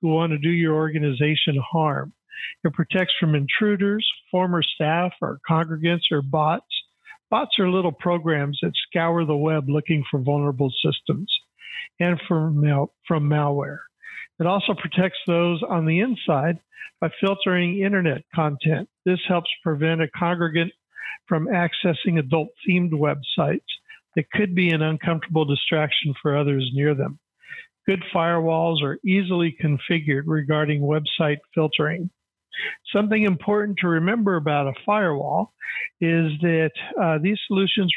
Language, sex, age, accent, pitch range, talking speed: English, male, 50-69, American, 155-185 Hz, 130 wpm